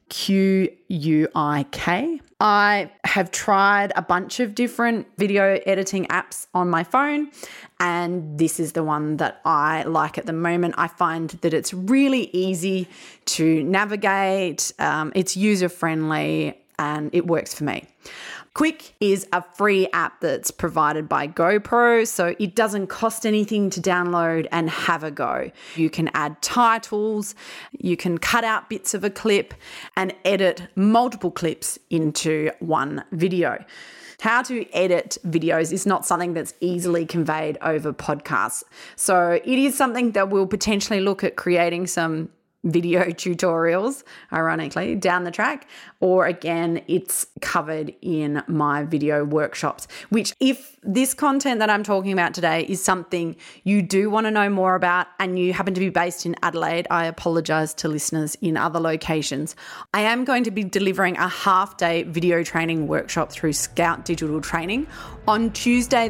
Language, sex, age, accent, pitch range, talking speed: English, female, 30-49, Australian, 165-210 Hz, 155 wpm